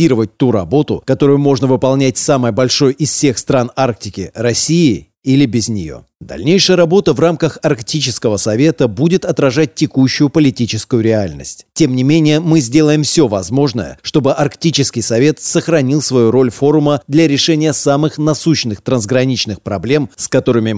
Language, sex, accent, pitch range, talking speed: Russian, male, native, 115-150 Hz, 140 wpm